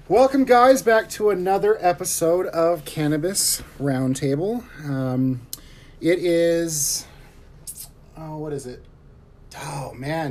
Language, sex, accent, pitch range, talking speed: English, male, American, 130-160 Hz, 105 wpm